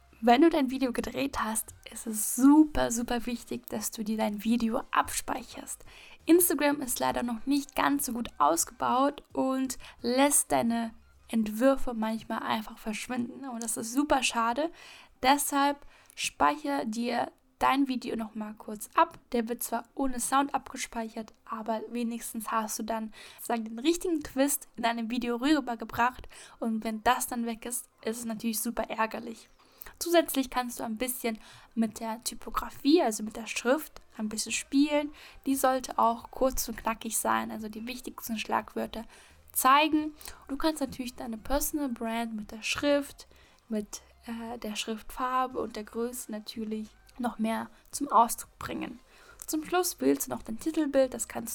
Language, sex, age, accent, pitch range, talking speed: German, female, 10-29, German, 225-270 Hz, 155 wpm